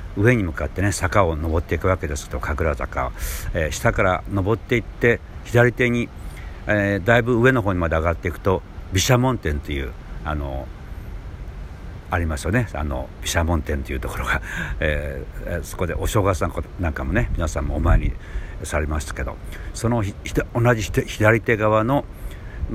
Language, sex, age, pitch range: Japanese, male, 60-79, 80-100 Hz